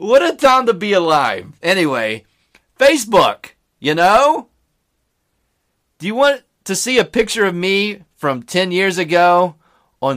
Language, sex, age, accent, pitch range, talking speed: English, male, 30-49, American, 140-210 Hz, 140 wpm